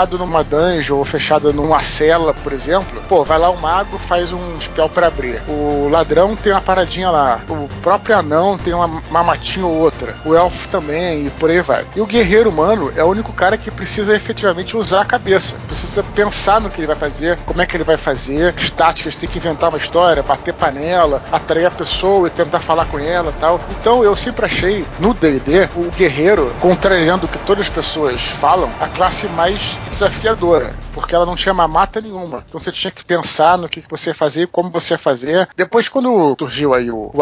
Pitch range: 155-185 Hz